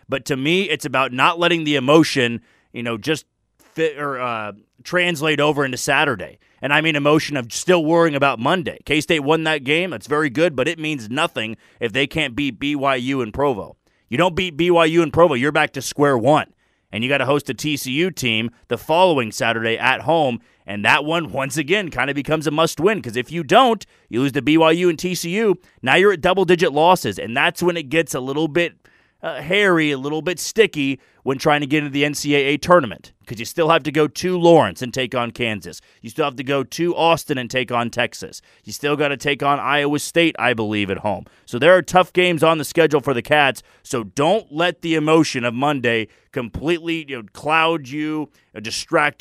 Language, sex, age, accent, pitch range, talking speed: English, male, 30-49, American, 130-160 Hz, 215 wpm